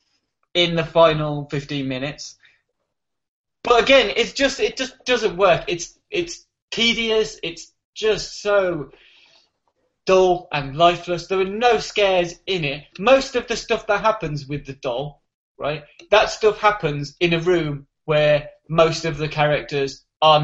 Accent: British